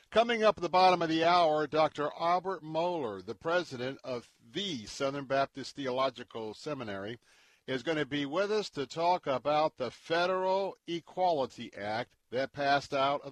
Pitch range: 125-165 Hz